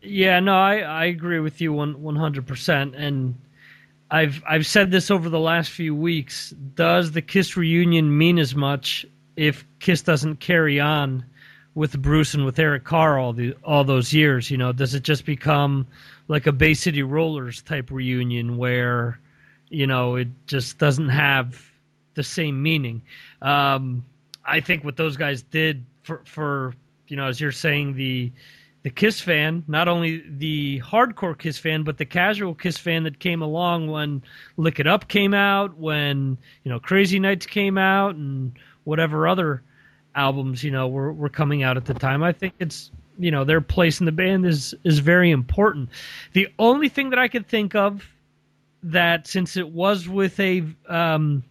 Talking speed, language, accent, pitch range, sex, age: 180 wpm, English, American, 140-175 Hz, male, 30-49